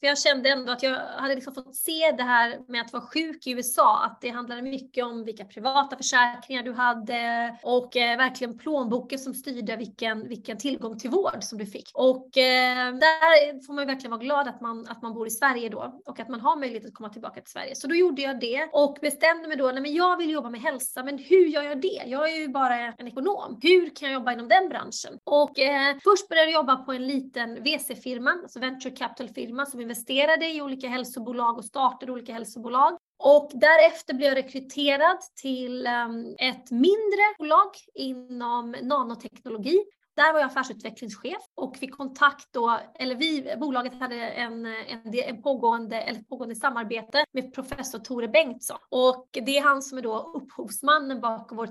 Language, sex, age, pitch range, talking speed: Swedish, female, 30-49, 240-290 Hz, 185 wpm